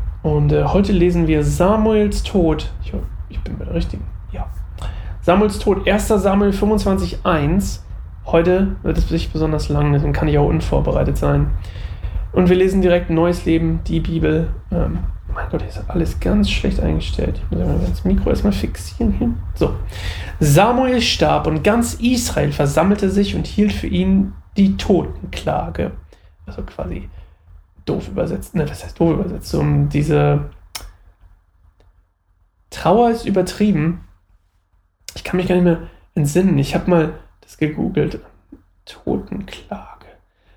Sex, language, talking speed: male, German, 140 wpm